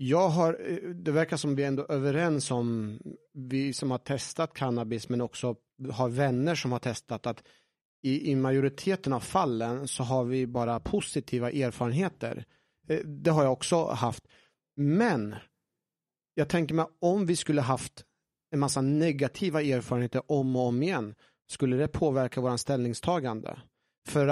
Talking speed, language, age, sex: 155 wpm, Swedish, 30-49, male